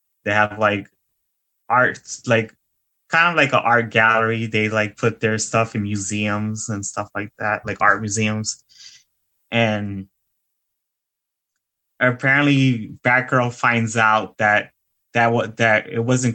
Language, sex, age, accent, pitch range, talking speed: English, male, 20-39, American, 105-120 Hz, 130 wpm